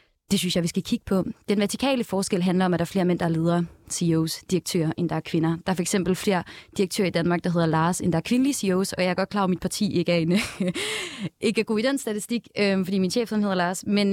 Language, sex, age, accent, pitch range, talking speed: Danish, female, 20-39, native, 175-215 Hz, 290 wpm